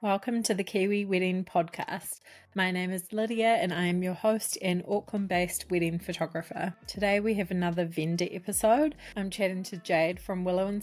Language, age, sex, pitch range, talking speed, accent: English, 20-39, female, 170-200 Hz, 175 wpm, Australian